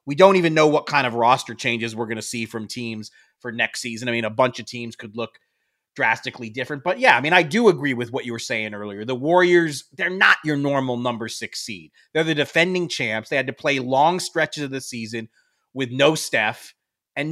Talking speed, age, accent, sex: 230 wpm, 30-49, American, male